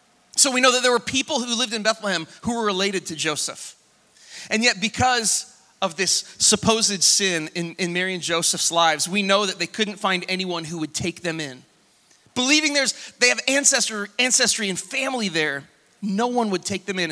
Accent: American